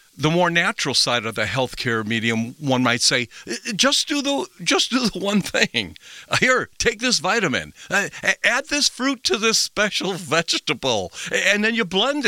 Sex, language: male, English